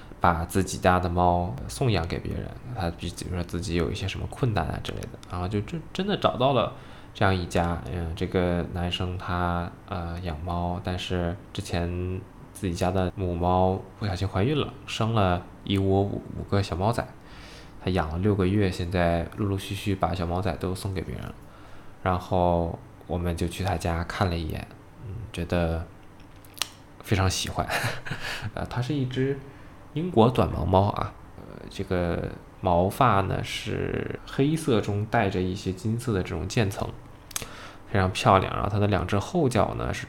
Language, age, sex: Chinese, 20-39, male